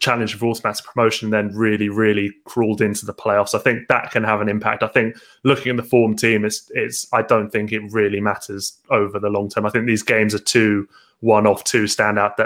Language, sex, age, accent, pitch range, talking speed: English, male, 20-39, British, 110-130 Hz, 230 wpm